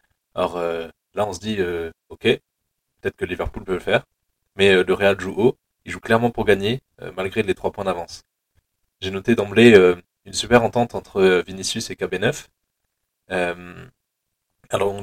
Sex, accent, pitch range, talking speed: male, French, 90-115 Hz, 180 wpm